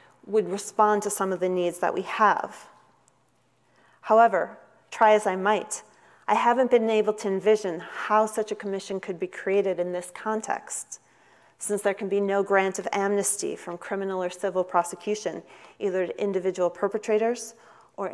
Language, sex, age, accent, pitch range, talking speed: English, female, 40-59, American, 190-220 Hz, 160 wpm